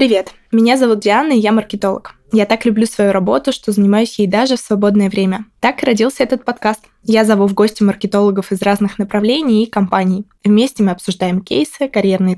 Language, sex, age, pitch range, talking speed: Russian, female, 20-39, 195-230 Hz, 190 wpm